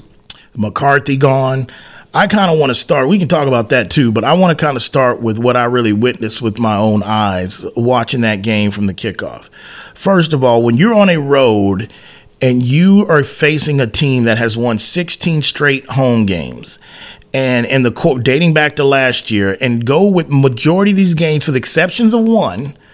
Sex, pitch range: male, 125-170 Hz